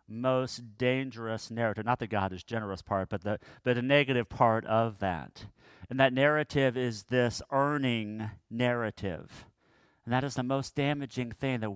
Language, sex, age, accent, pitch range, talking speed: English, male, 40-59, American, 100-125 Hz, 165 wpm